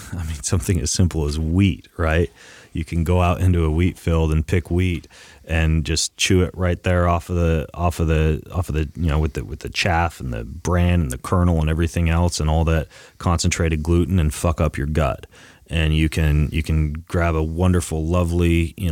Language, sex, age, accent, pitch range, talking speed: English, male, 30-49, American, 80-85 Hz, 220 wpm